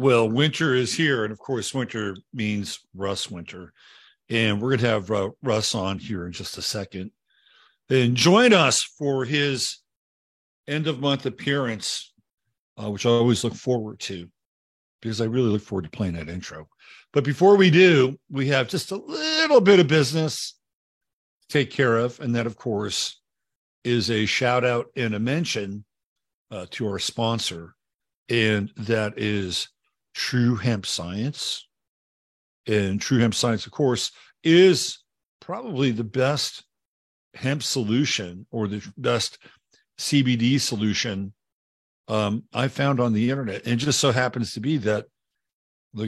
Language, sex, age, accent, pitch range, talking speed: English, male, 50-69, American, 105-135 Hz, 150 wpm